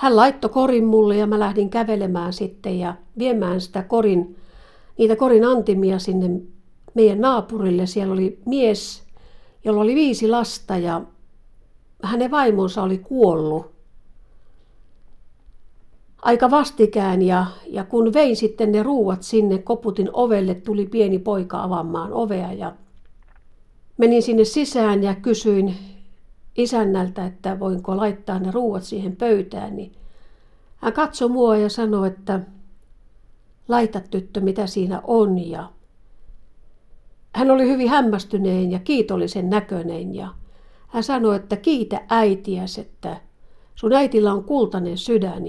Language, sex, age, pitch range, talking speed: Finnish, female, 60-79, 190-230 Hz, 125 wpm